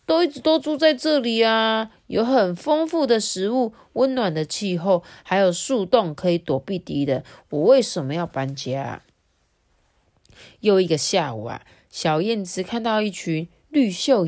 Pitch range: 160-255 Hz